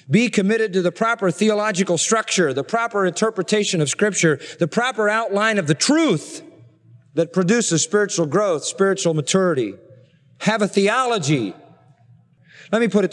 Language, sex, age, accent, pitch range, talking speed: English, male, 40-59, American, 155-195 Hz, 140 wpm